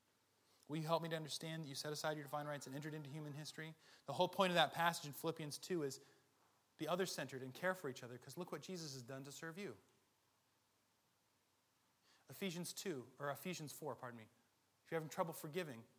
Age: 30-49